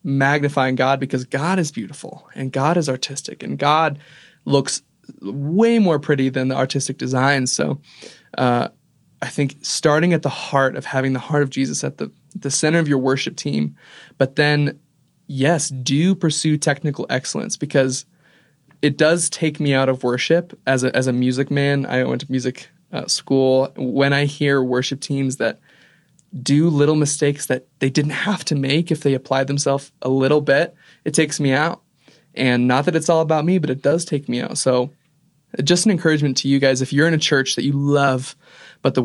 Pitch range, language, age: 130-150 Hz, English, 20-39